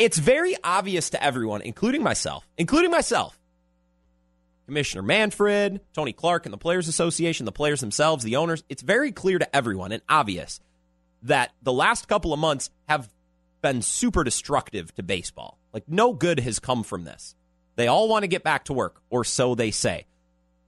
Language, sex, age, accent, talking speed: English, male, 30-49, American, 175 wpm